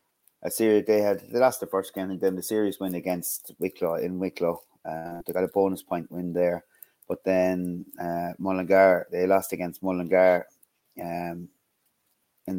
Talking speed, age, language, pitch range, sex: 170 wpm, 30-49, English, 90-105 Hz, male